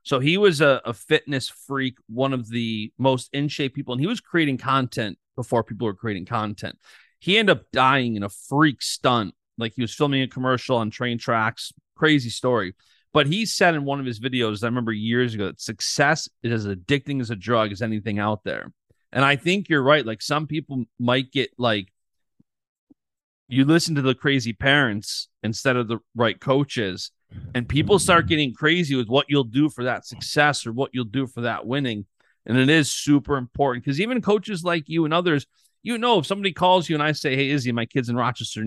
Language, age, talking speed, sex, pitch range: English, 30-49, 210 wpm, male, 120-150 Hz